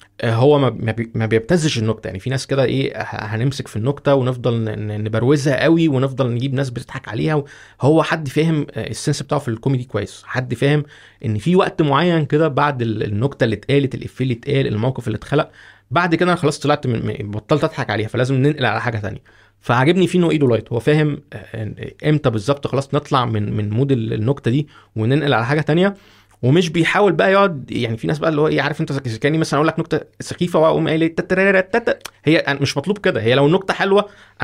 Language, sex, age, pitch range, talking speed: Arabic, male, 20-39, 115-160 Hz, 185 wpm